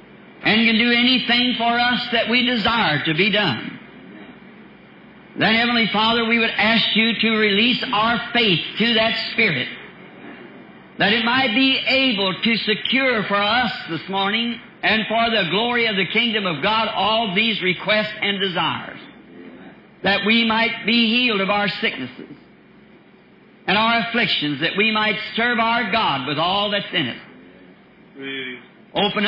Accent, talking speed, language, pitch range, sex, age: American, 150 wpm, English, 205-235 Hz, male, 60-79